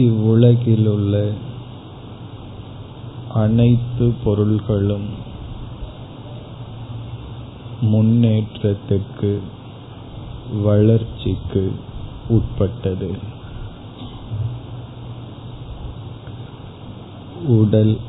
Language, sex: Tamil, male